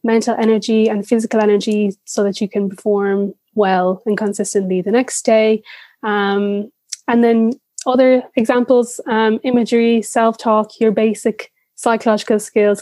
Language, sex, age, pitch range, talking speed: English, female, 10-29, 200-230 Hz, 135 wpm